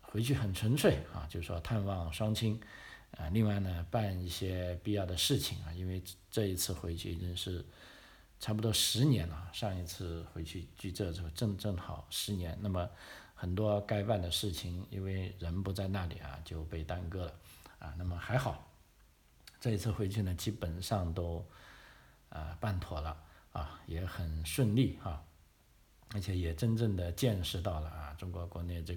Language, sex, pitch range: Chinese, male, 85-105 Hz